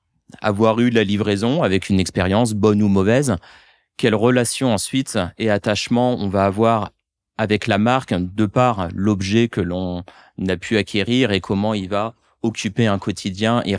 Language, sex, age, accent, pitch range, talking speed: French, male, 30-49, French, 105-125 Hz, 160 wpm